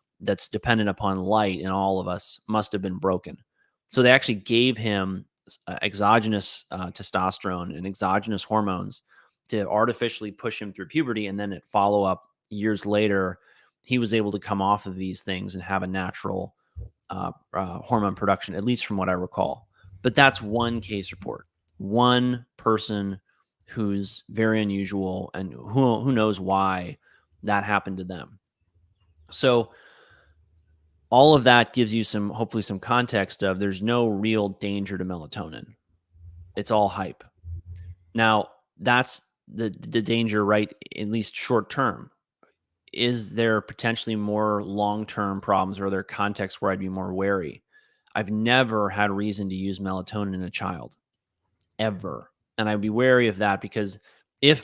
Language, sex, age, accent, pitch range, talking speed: English, male, 30-49, American, 95-110 Hz, 155 wpm